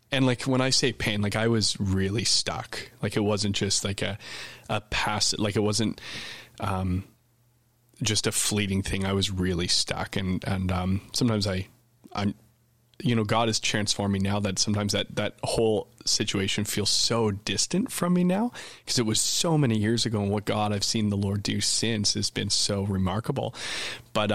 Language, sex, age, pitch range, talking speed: English, male, 20-39, 100-115 Hz, 185 wpm